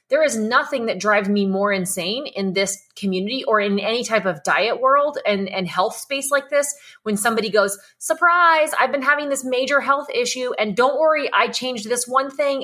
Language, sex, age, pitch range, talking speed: English, female, 20-39, 195-255 Hz, 205 wpm